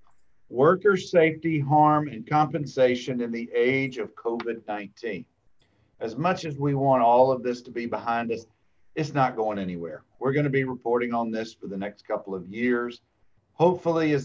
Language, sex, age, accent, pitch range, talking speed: English, male, 50-69, American, 120-155 Hz, 175 wpm